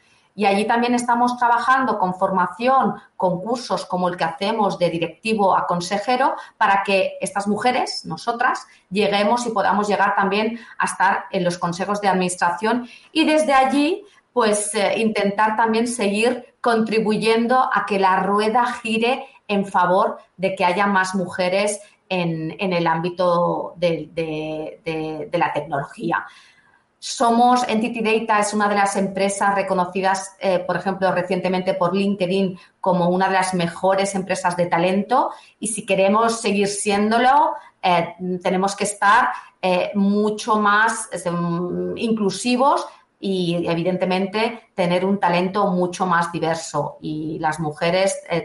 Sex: female